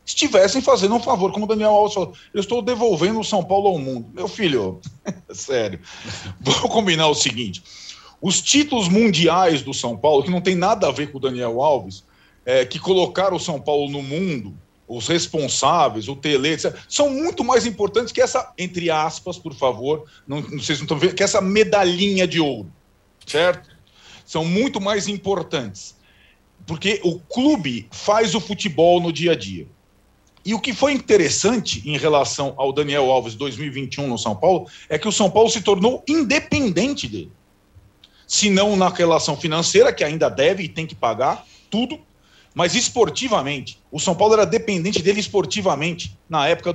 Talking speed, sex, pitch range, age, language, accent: 175 wpm, male, 135-205 Hz, 40-59, Portuguese, Brazilian